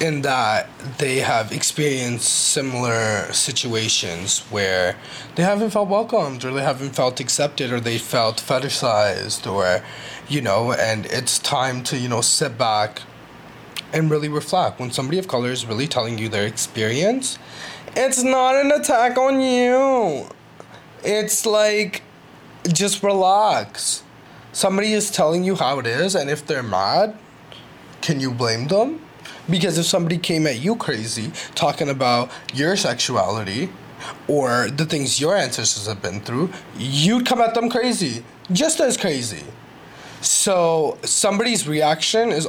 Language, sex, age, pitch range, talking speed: English, male, 20-39, 120-195 Hz, 145 wpm